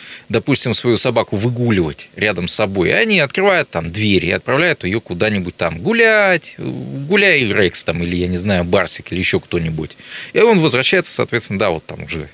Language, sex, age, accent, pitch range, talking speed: Russian, male, 20-39, native, 100-155 Hz, 180 wpm